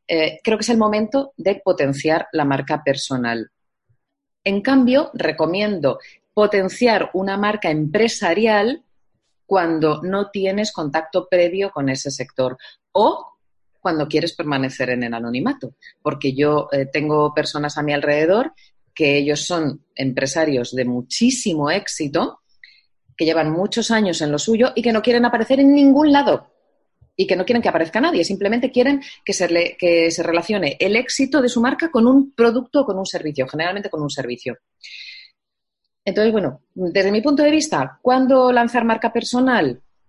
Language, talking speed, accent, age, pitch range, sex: Spanish, 155 wpm, Spanish, 30-49, 145-225 Hz, female